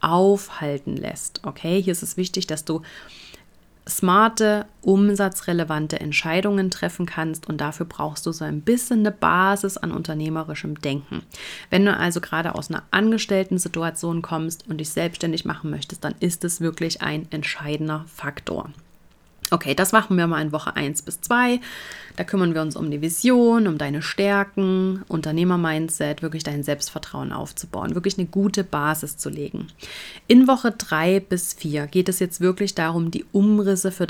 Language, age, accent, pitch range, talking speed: German, 30-49, German, 155-195 Hz, 160 wpm